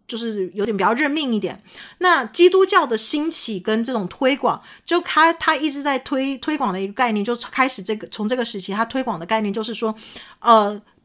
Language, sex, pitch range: Chinese, female, 210-290 Hz